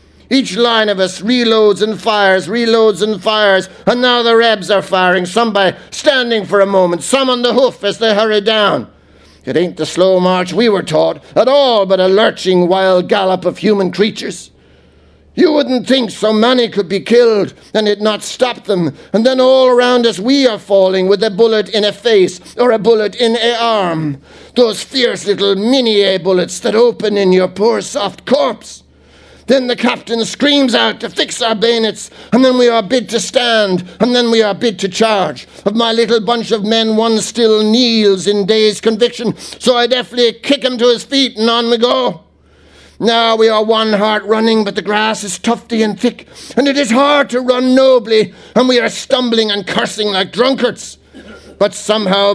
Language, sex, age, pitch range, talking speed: English, male, 60-79, 200-240 Hz, 195 wpm